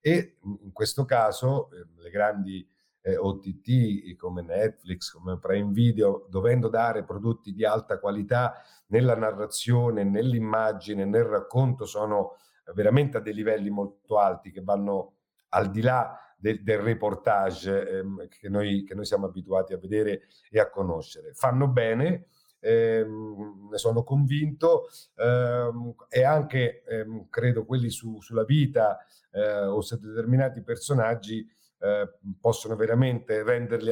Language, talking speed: Italian, 125 wpm